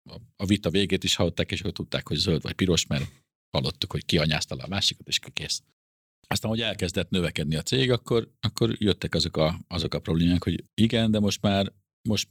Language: Hungarian